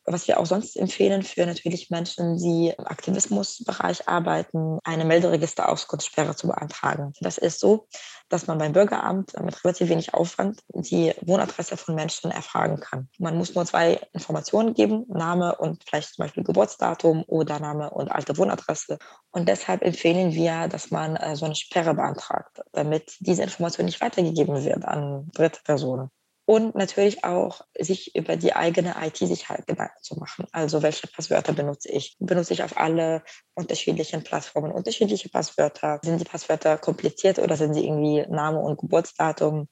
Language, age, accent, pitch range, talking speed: German, 20-39, German, 155-185 Hz, 155 wpm